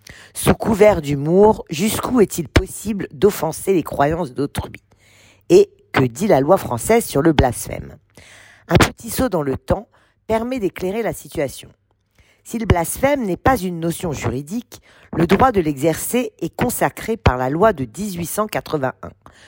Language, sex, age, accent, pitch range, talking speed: French, female, 40-59, French, 130-205 Hz, 150 wpm